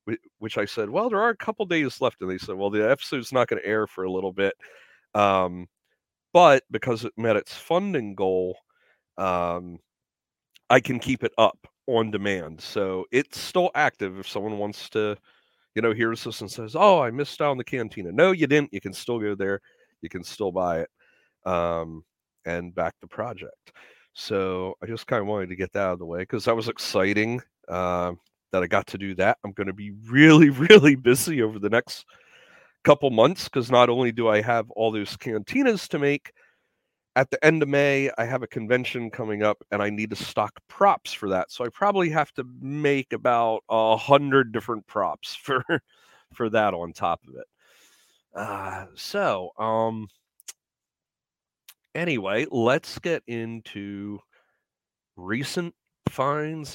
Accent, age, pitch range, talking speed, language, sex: American, 40-59, 100-140 Hz, 180 wpm, English, male